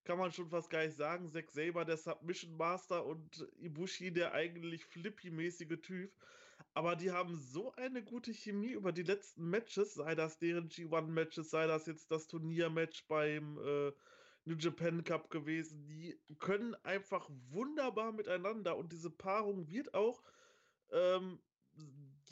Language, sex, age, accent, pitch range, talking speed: German, male, 20-39, German, 165-210 Hz, 150 wpm